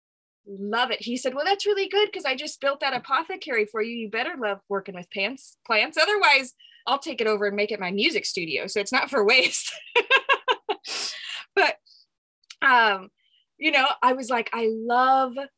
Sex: female